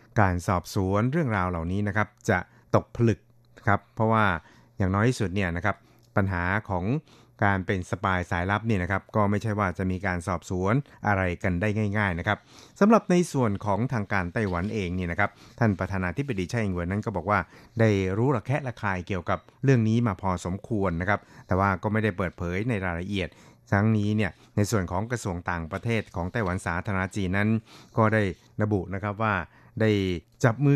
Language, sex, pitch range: Thai, male, 95-115 Hz